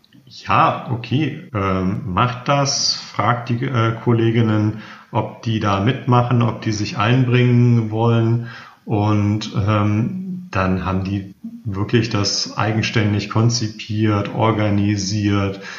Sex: male